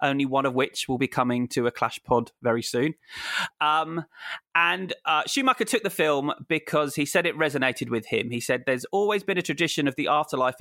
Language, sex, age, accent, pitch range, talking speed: English, male, 20-39, British, 125-155 Hz, 210 wpm